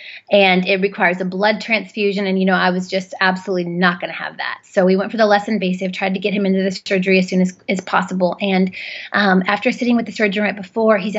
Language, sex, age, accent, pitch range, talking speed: English, female, 30-49, American, 195-235 Hz, 250 wpm